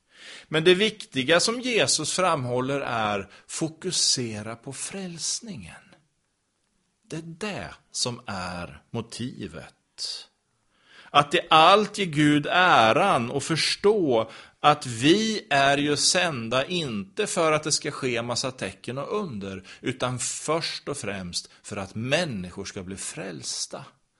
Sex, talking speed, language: male, 125 wpm, Swedish